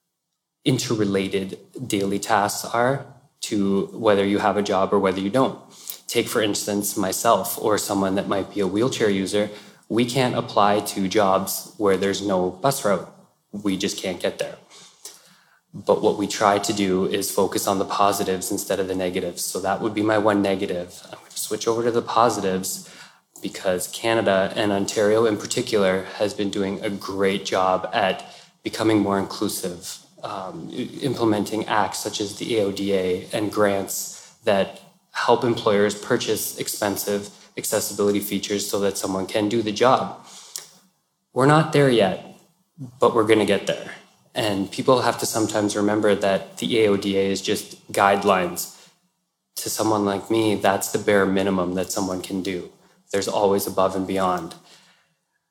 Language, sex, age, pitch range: English, male, 20-39, 95-110 Hz